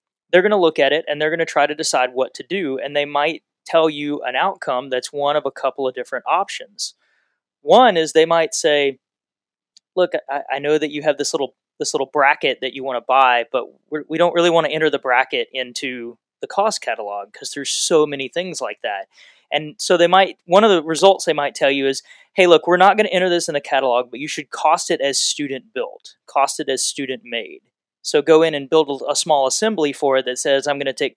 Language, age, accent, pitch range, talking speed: English, 20-39, American, 130-160 Hz, 245 wpm